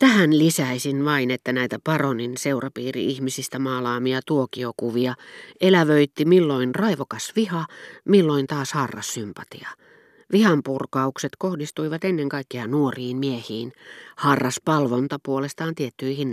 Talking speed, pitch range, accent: 95 wpm, 120-155 Hz, native